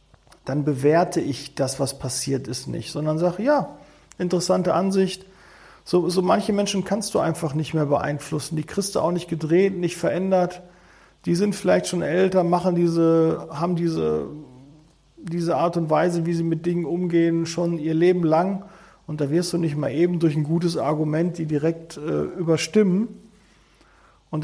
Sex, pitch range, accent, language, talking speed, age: male, 155-185 Hz, German, German, 165 wpm, 40-59